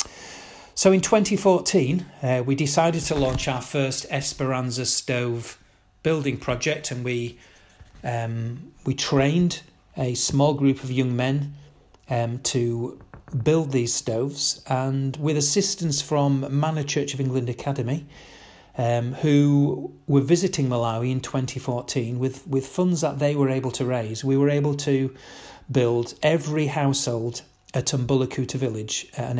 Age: 40-59